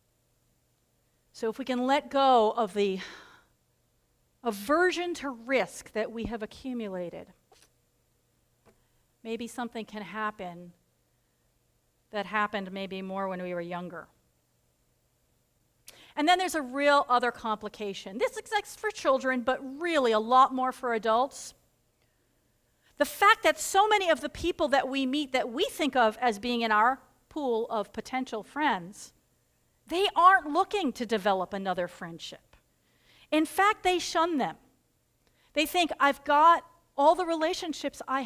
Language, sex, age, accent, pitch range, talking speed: English, female, 40-59, American, 215-290 Hz, 140 wpm